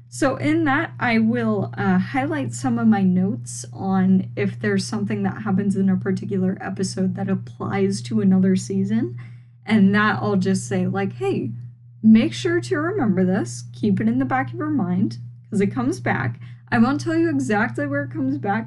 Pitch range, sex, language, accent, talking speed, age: 120-195 Hz, female, English, American, 190 wpm, 10-29